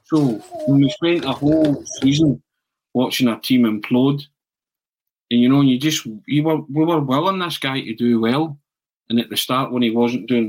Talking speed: 190 wpm